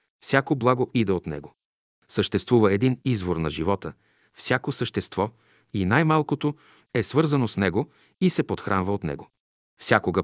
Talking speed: 140 wpm